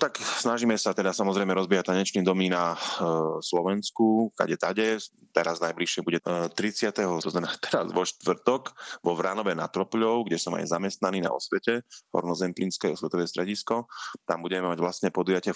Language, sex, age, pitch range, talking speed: Slovak, male, 30-49, 85-95 Hz, 160 wpm